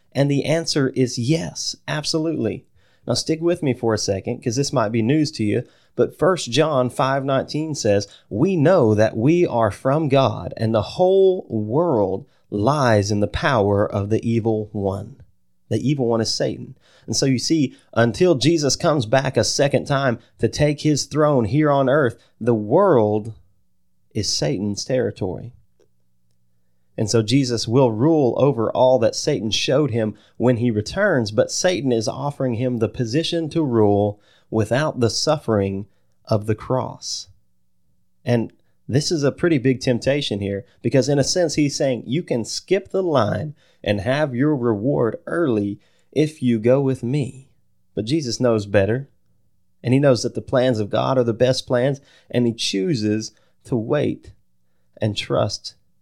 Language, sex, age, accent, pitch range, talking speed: English, male, 30-49, American, 105-140 Hz, 165 wpm